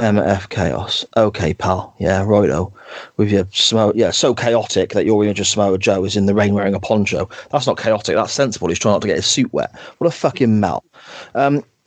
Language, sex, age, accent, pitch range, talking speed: English, male, 30-49, British, 105-165 Hz, 220 wpm